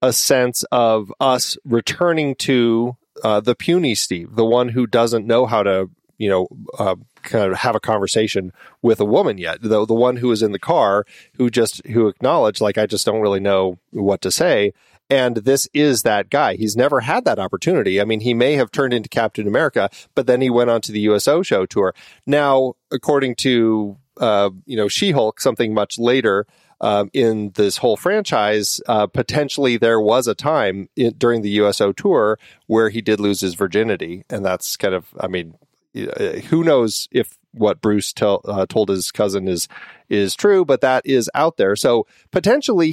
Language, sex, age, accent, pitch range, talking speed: English, male, 40-59, American, 105-130 Hz, 190 wpm